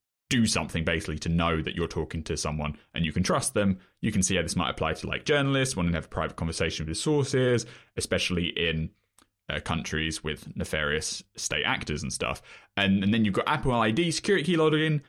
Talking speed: 210 wpm